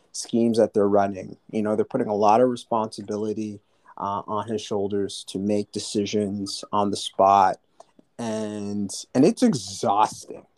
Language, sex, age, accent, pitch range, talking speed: English, male, 30-49, American, 110-140 Hz, 145 wpm